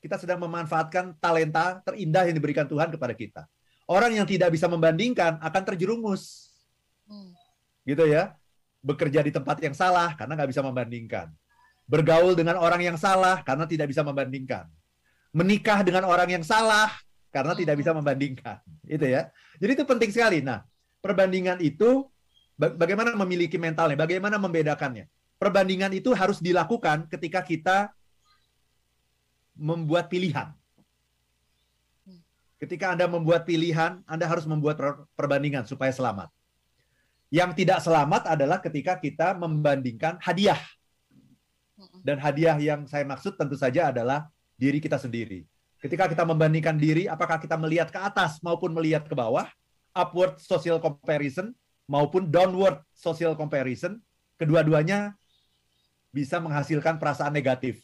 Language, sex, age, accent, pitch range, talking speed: Indonesian, male, 30-49, native, 140-180 Hz, 125 wpm